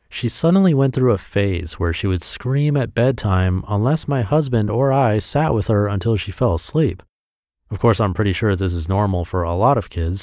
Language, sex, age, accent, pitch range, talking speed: English, male, 30-49, American, 90-125 Hz, 215 wpm